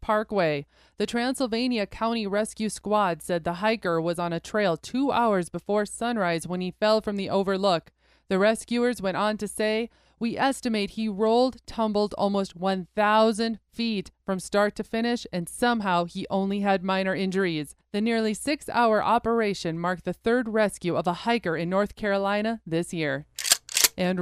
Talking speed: 160 wpm